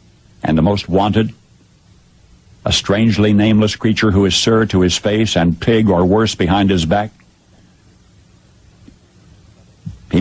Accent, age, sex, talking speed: American, 60-79, male, 130 wpm